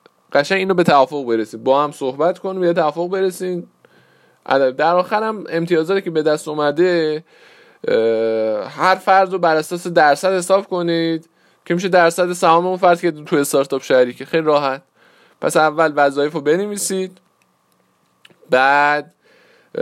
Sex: male